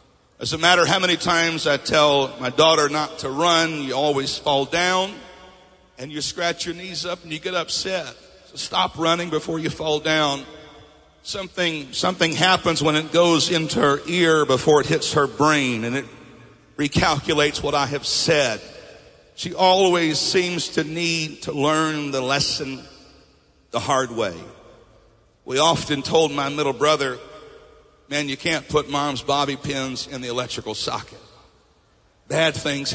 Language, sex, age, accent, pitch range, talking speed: English, male, 50-69, American, 140-170 Hz, 155 wpm